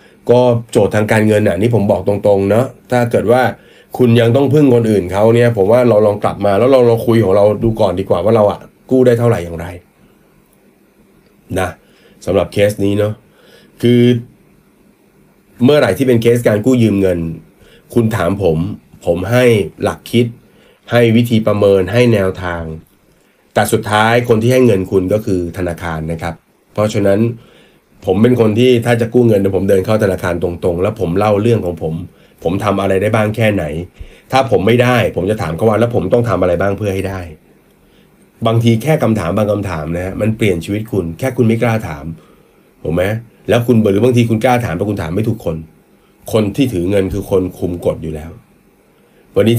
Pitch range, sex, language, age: 95-120 Hz, male, Thai, 30-49